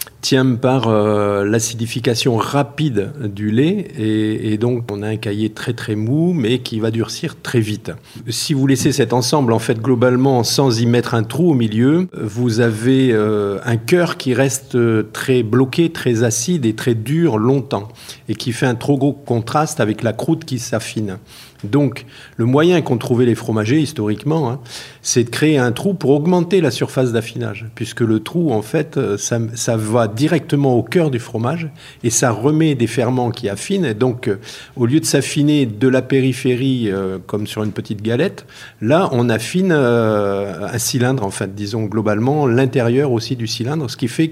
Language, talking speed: French, 185 wpm